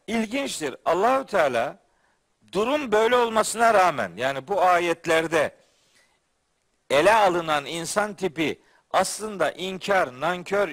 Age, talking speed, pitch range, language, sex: 50-69, 95 wpm, 185-230 Hz, Turkish, male